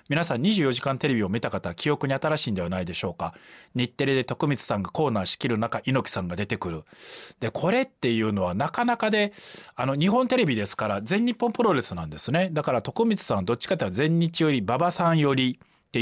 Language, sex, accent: Japanese, male, native